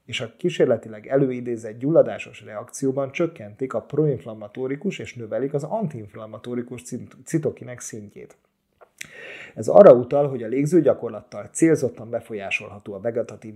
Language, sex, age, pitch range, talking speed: Hungarian, male, 30-49, 110-140 Hz, 110 wpm